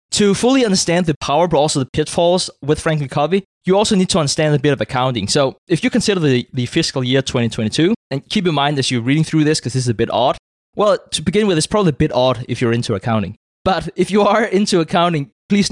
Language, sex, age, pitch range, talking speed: English, male, 20-39, 125-170 Hz, 250 wpm